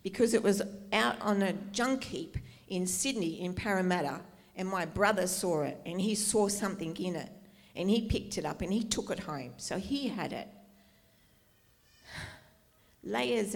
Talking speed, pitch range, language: 170 wpm, 175-200 Hz, English